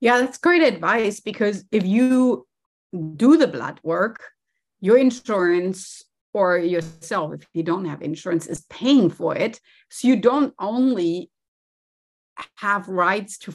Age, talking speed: 30-49, 135 wpm